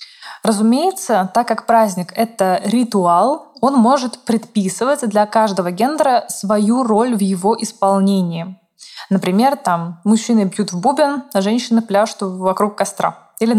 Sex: female